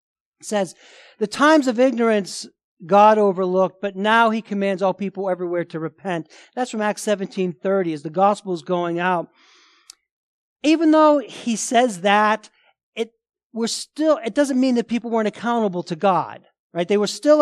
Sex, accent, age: male, American, 50-69